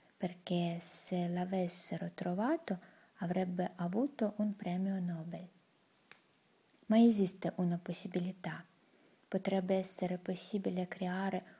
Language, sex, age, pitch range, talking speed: Italian, female, 20-39, 180-215 Hz, 90 wpm